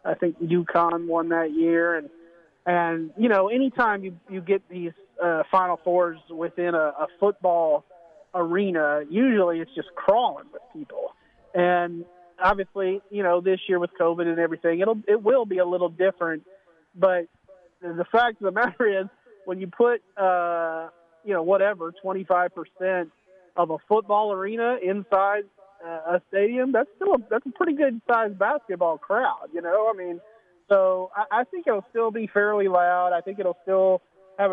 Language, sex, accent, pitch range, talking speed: English, male, American, 170-195 Hz, 170 wpm